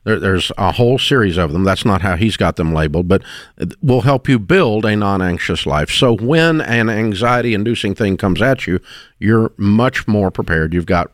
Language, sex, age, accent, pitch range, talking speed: English, male, 50-69, American, 90-120 Hz, 190 wpm